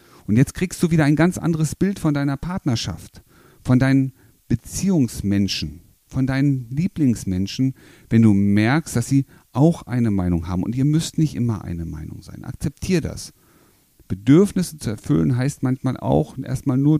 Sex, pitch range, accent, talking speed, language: male, 105-140 Hz, German, 160 wpm, German